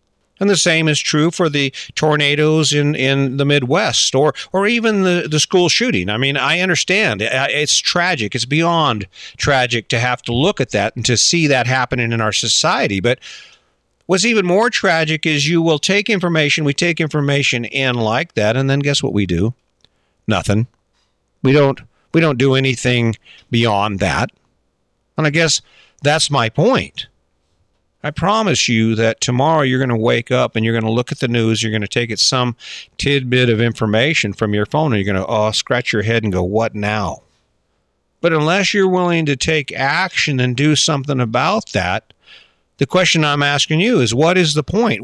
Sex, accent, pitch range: male, American, 115-155 Hz